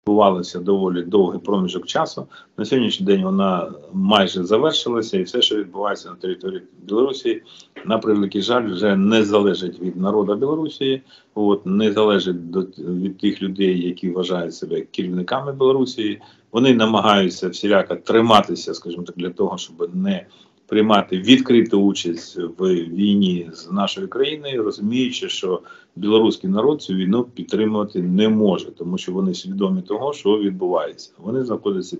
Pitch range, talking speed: 90-135 Hz, 140 wpm